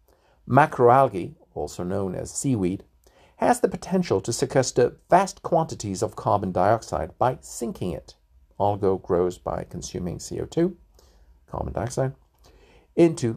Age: 50-69